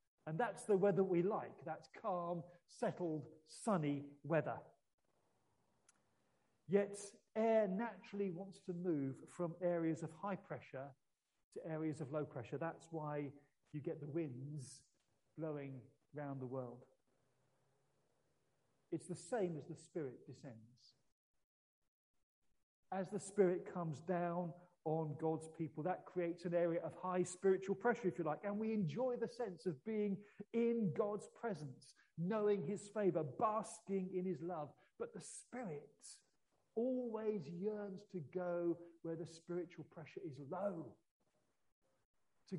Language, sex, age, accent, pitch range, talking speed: English, male, 40-59, British, 150-200 Hz, 130 wpm